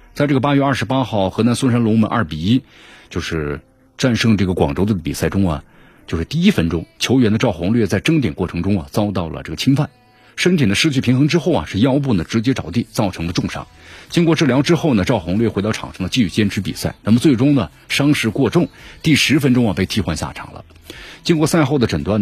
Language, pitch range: Chinese, 90-130 Hz